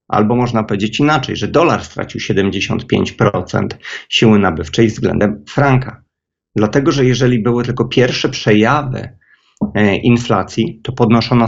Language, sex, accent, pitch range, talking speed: Polish, male, native, 105-120 Hz, 115 wpm